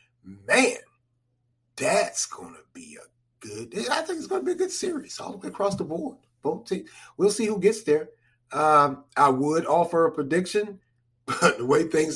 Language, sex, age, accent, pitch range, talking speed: English, male, 30-49, American, 120-165 Hz, 185 wpm